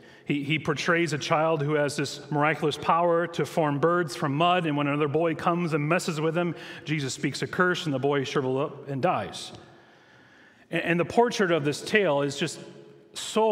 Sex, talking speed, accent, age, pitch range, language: male, 200 wpm, American, 30-49, 140-175 Hz, English